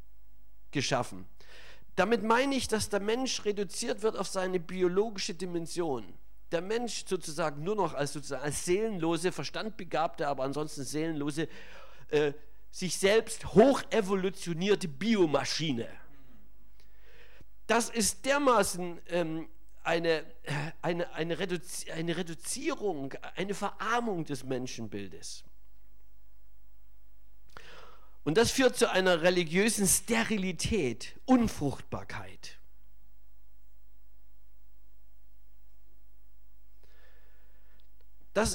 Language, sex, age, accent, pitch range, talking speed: German, male, 50-69, German, 125-200 Hz, 85 wpm